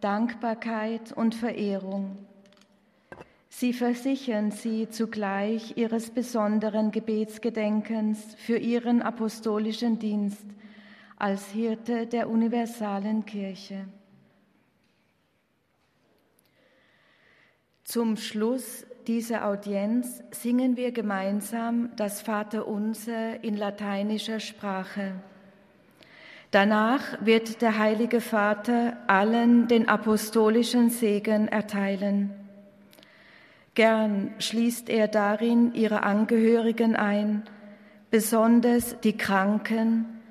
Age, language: 40-59, German